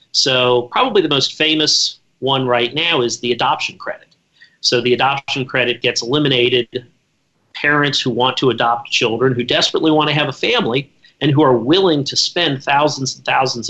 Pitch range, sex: 125-155 Hz, male